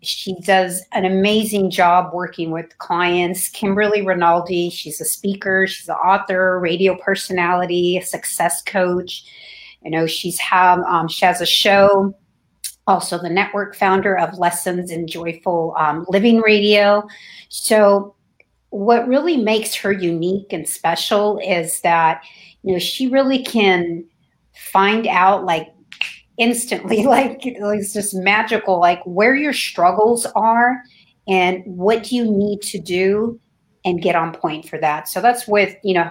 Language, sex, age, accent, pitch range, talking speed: English, female, 40-59, American, 175-205 Hz, 145 wpm